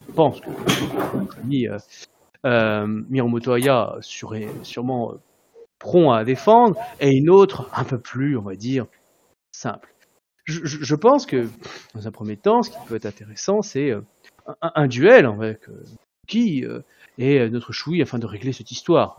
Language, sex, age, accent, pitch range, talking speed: French, male, 30-49, French, 115-160 Hz, 165 wpm